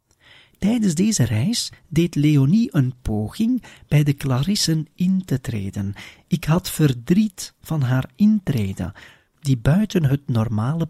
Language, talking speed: Dutch, 125 wpm